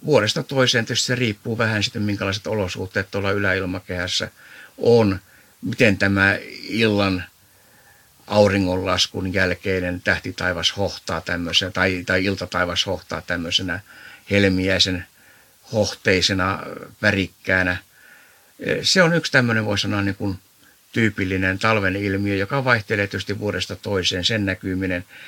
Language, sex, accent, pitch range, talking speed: Finnish, male, native, 95-110 Hz, 105 wpm